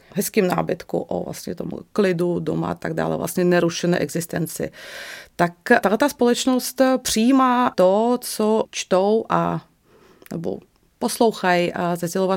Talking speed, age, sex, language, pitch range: 120 wpm, 30-49, female, Czech, 180-215 Hz